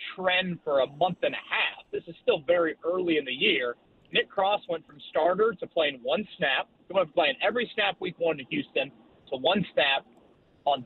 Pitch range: 140-195 Hz